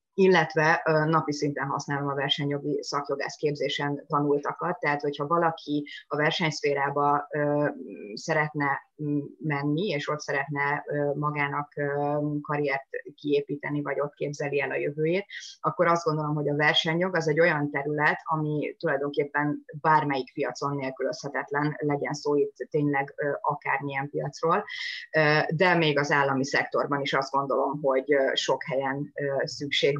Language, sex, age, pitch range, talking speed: Hungarian, female, 30-49, 140-155 Hz, 120 wpm